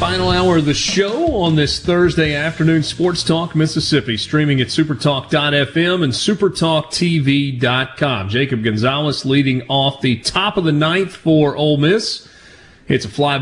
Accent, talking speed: American, 145 wpm